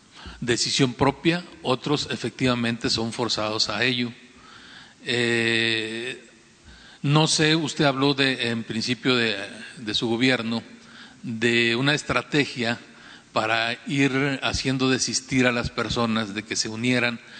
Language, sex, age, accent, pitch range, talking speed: Spanish, male, 40-59, Mexican, 115-140 Hz, 115 wpm